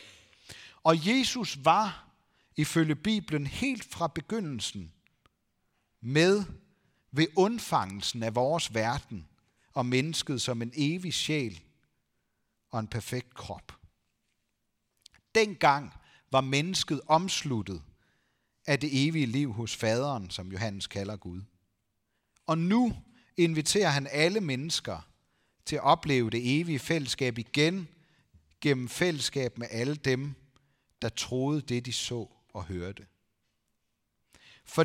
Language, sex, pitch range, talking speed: Danish, male, 110-160 Hz, 110 wpm